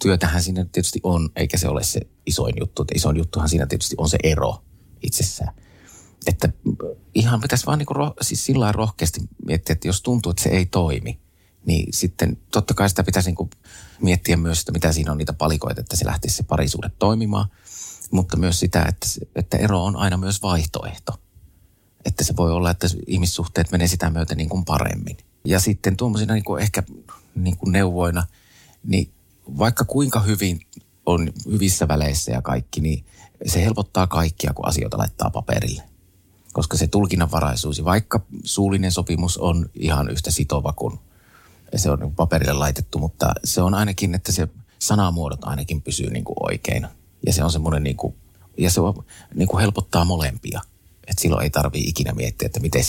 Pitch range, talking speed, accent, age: 80-100 Hz, 165 wpm, native, 30-49